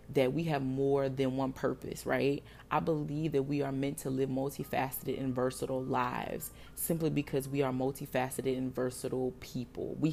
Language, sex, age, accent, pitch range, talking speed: English, female, 20-39, American, 130-155 Hz, 170 wpm